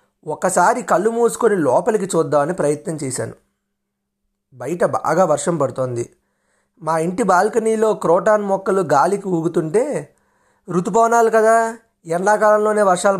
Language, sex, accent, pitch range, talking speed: Telugu, male, native, 160-210 Hz, 100 wpm